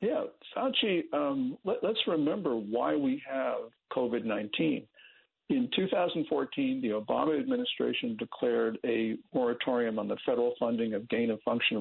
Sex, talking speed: male, 120 wpm